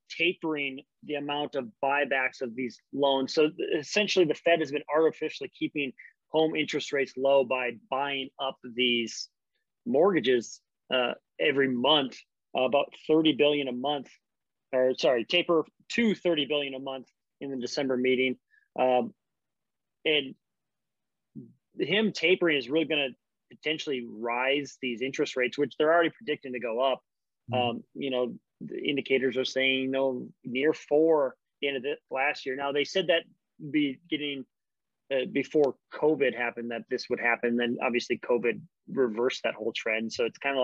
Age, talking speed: 30-49, 160 wpm